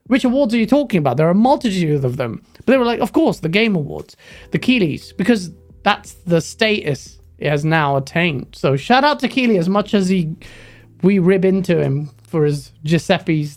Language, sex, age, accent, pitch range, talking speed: English, male, 30-49, British, 140-195 Hz, 210 wpm